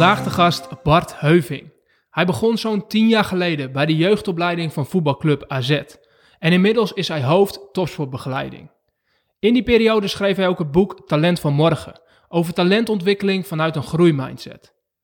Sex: male